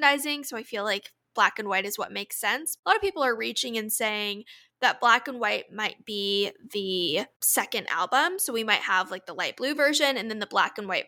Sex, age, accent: female, 10-29, American